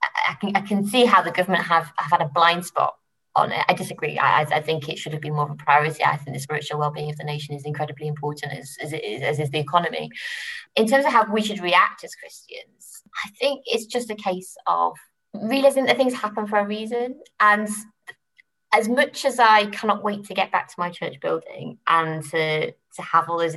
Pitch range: 165-215 Hz